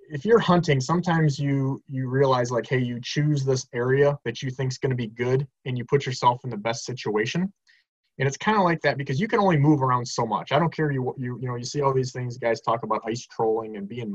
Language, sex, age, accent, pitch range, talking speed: English, male, 20-39, American, 110-140 Hz, 265 wpm